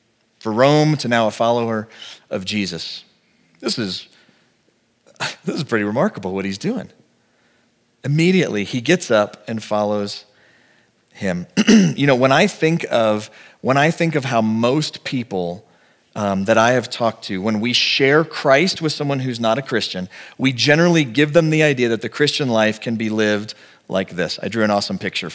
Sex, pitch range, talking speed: male, 110-165 Hz, 175 wpm